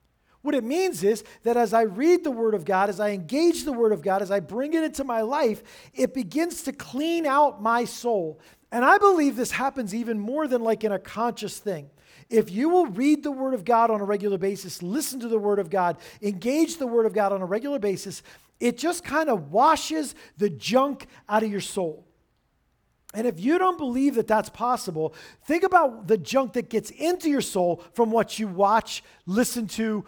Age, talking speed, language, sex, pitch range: 40-59, 215 wpm, English, male, 205-275 Hz